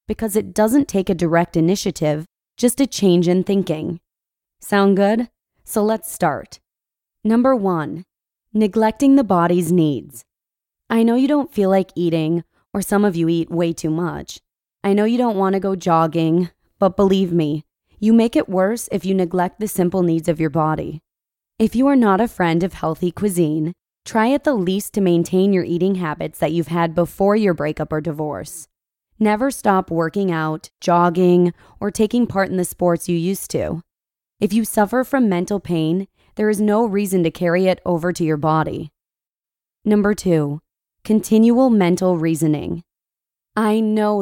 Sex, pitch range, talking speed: female, 170-210 Hz, 170 wpm